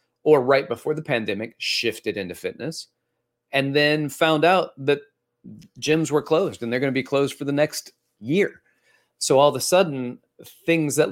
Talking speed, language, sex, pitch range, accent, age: 180 wpm, English, male, 120-160 Hz, American, 30-49